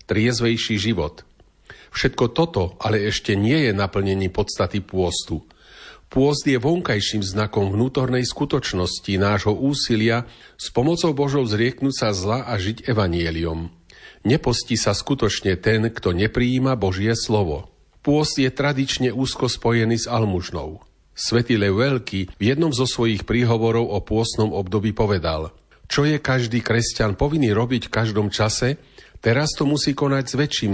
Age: 40-59